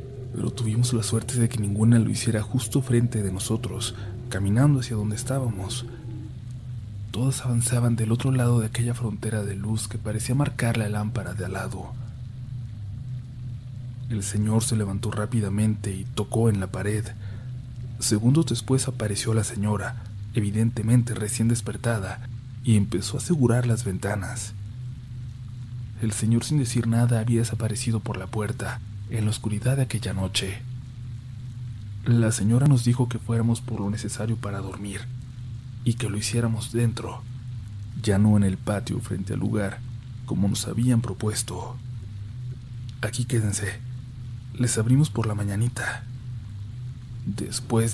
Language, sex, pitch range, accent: Spanish, male, 105-120 Hz, Mexican